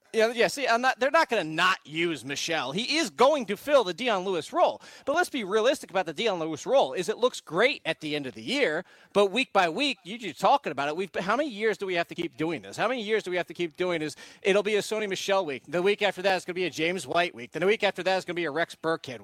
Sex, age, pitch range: male, 40-59, 160-210 Hz